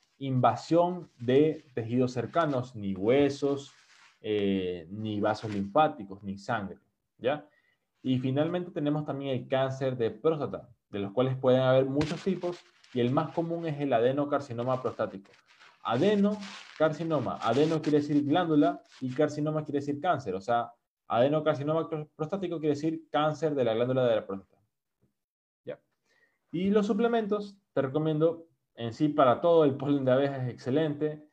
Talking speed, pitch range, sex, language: 140 wpm, 120-160 Hz, male, Spanish